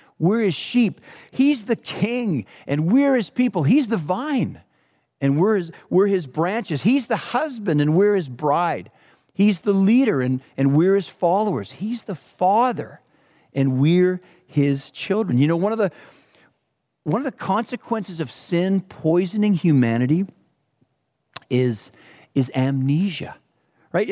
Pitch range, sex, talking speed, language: 150-220 Hz, male, 145 wpm, English